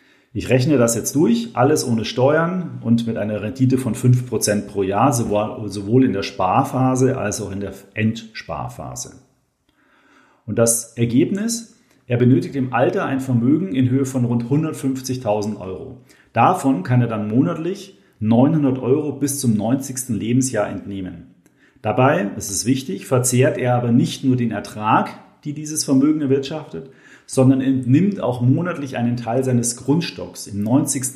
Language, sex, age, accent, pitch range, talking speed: German, male, 40-59, German, 110-135 Hz, 150 wpm